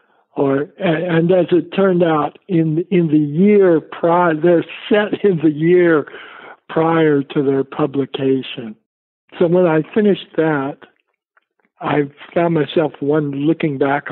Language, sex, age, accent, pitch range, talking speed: English, male, 60-79, American, 140-170 Hz, 130 wpm